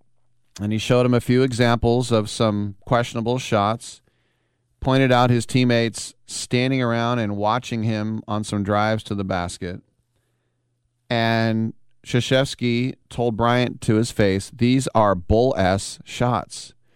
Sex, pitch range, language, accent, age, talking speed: male, 95-120 Hz, English, American, 40-59, 135 wpm